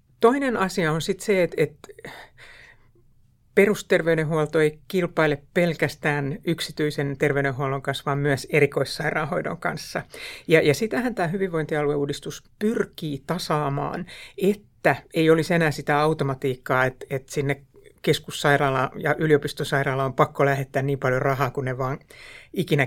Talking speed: 125 wpm